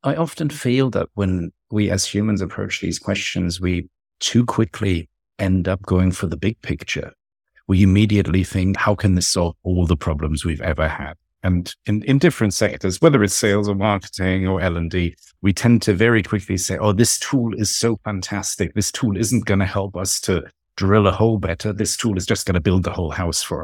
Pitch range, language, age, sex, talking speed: 90-110 Hz, English, 50-69, male, 205 wpm